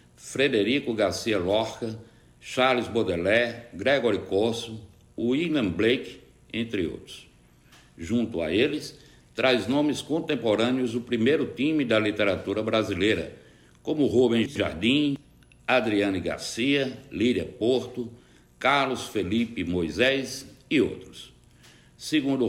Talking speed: 95 wpm